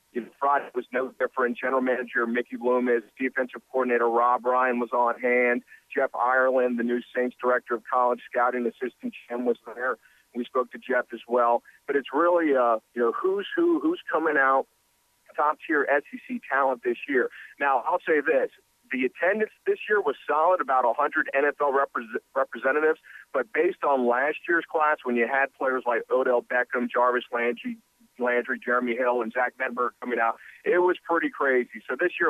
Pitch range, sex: 125-150 Hz, male